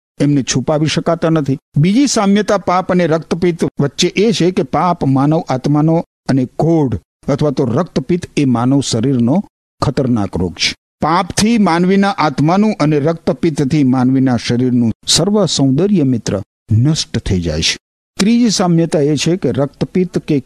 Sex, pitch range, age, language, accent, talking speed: male, 130-195 Hz, 50-69, Gujarati, native, 90 wpm